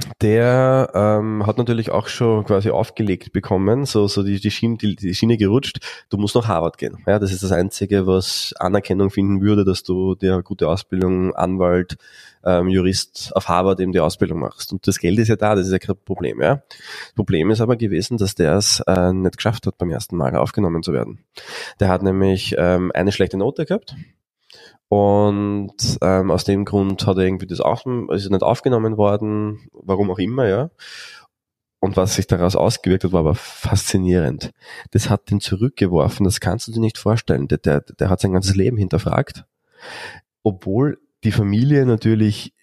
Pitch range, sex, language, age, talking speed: 95-110 Hz, male, German, 20-39, 185 wpm